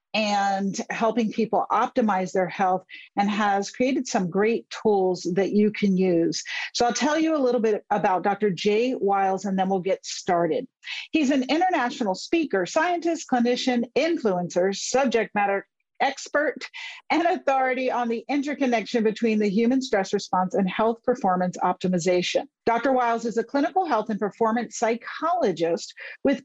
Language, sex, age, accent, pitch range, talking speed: English, female, 50-69, American, 195-270 Hz, 150 wpm